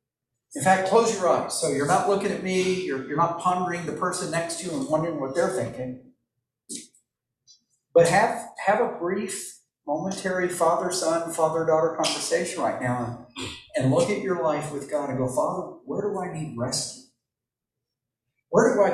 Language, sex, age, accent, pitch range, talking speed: English, male, 50-69, American, 130-180 Hz, 170 wpm